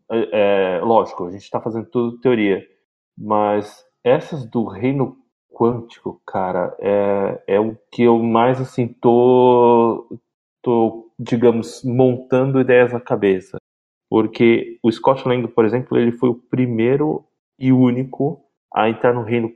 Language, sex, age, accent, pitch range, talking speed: Portuguese, male, 20-39, Brazilian, 105-125 Hz, 130 wpm